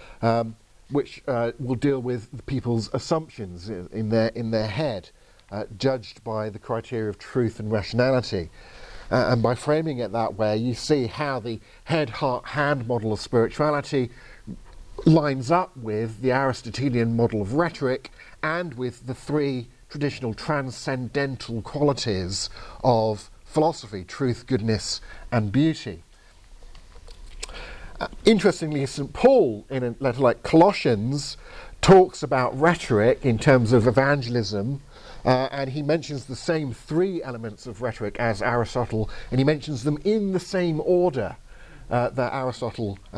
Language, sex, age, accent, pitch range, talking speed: English, male, 50-69, British, 110-145 Hz, 140 wpm